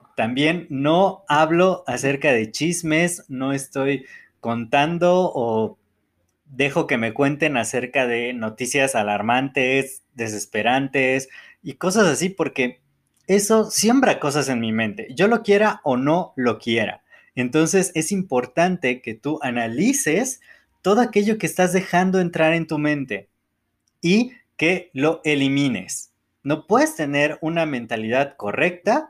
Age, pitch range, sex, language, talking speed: 20-39, 120-165 Hz, male, Spanish, 125 wpm